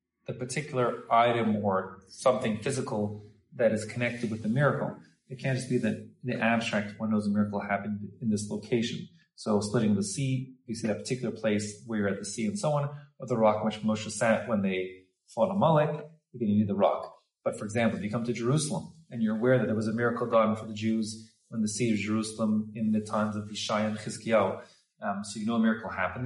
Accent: Canadian